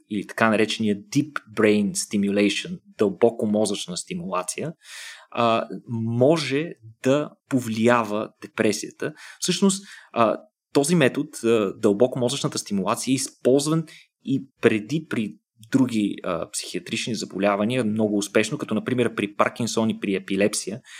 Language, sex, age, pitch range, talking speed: Bulgarian, male, 20-39, 105-130 Hz, 105 wpm